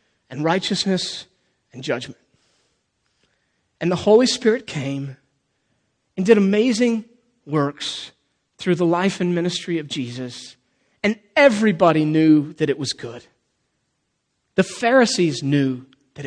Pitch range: 135-185 Hz